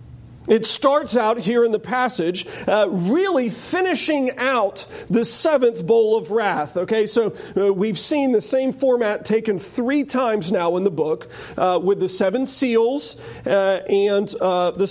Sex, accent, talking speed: male, American, 160 wpm